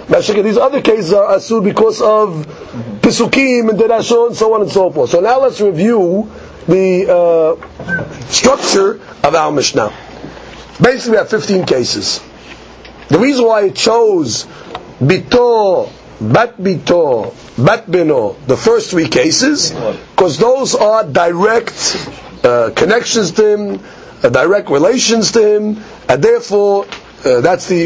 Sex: male